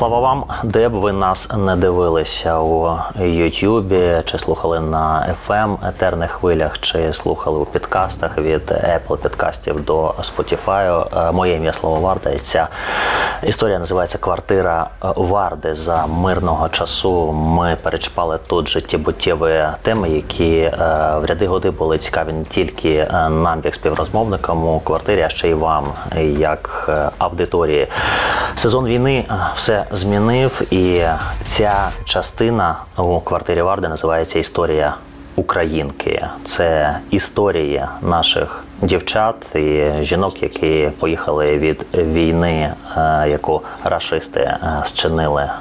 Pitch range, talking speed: 80-95 Hz, 115 wpm